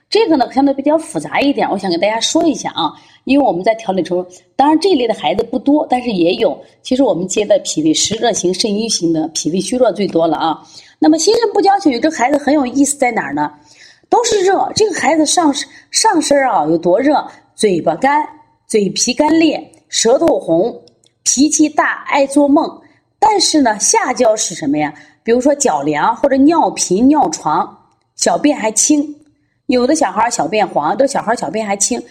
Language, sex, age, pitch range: Chinese, female, 30-49, 185-305 Hz